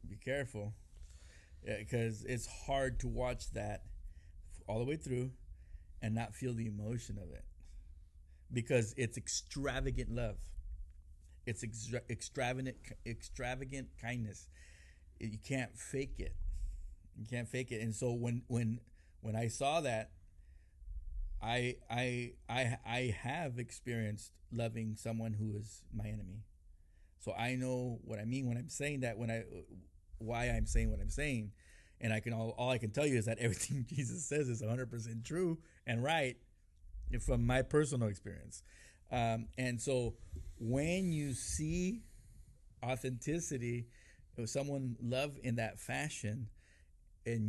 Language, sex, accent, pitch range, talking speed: English, male, American, 85-125 Hz, 140 wpm